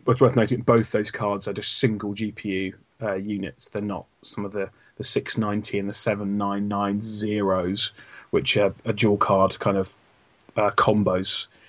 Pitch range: 105-120 Hz